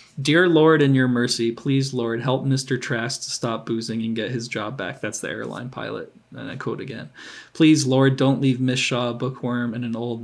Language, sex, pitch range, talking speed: English, male, 115-130 Hz, 215 wpm